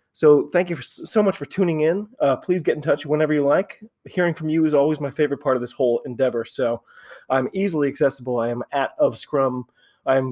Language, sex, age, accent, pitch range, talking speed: English, male, 30-49, American, 135-170 Hz, 225 wpm